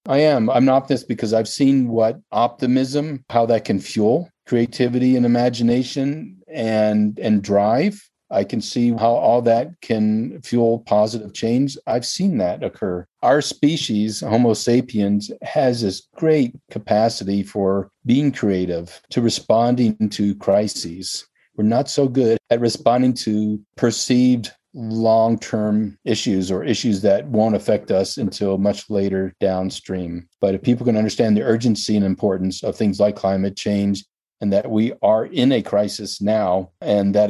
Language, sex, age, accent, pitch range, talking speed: English, male, 50-69, American, 100-120 Hz, 150 wpm